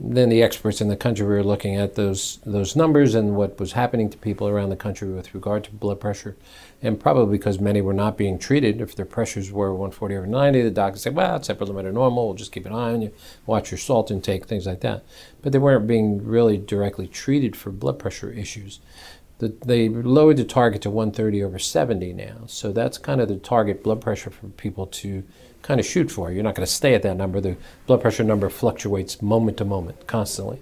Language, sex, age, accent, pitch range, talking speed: English, male, 50-69, American, 100-115 Hz, 225 wpm